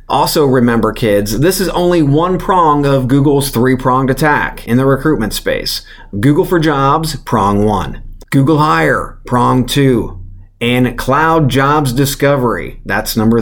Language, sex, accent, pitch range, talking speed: English, male, American, 115-150 Hz, 140 wpm